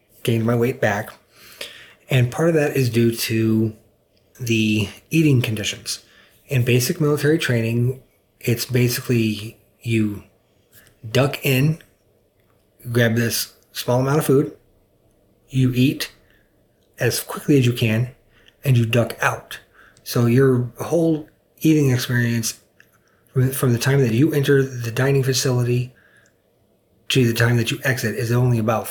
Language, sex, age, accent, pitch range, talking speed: German, male, 30-49, American, 115-130 Hz, 130 wpm